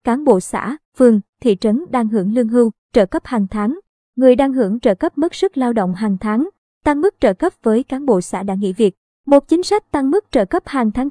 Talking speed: 245 wpm